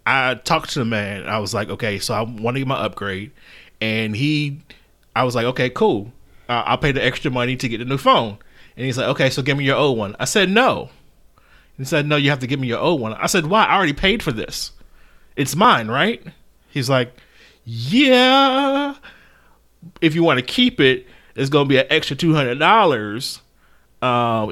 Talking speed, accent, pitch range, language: 210 wpm, American, 125-170 Hz, English